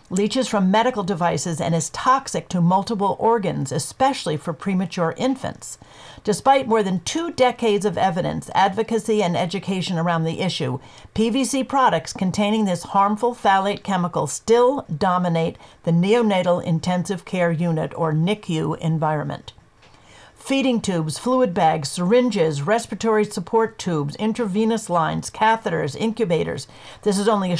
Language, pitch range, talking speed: English, 170-225 Hz, 130 wpm